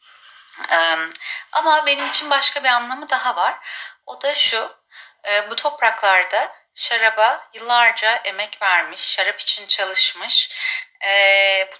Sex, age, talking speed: female, 30-49, 105 wpm